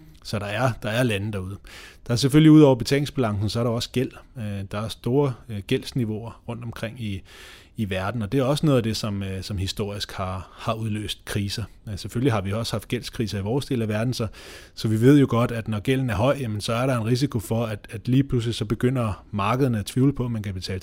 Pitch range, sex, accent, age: 100-120 Hz, male, native, 30-49